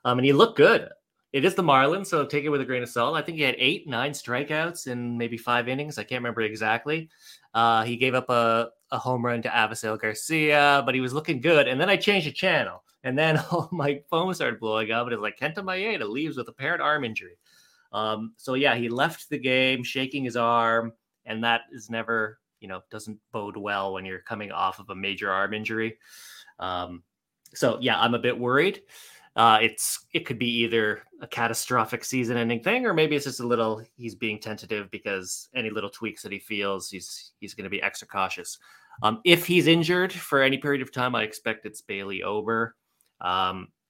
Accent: American